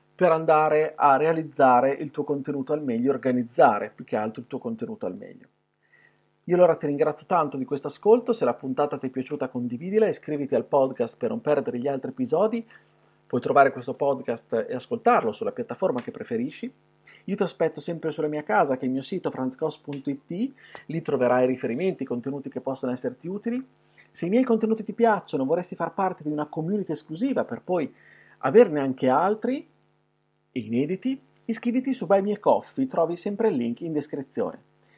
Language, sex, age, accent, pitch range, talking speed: Italian, male, 40-59, native, 135-200 Hz, 175 wpm